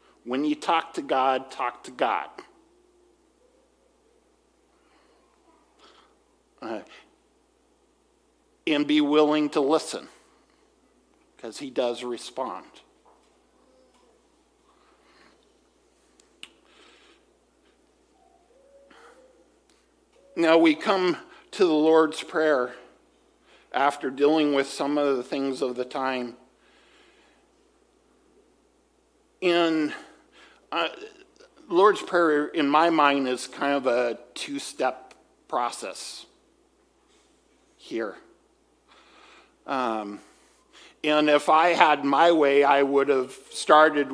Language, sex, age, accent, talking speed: English, male, 50-69, American, 85 wpm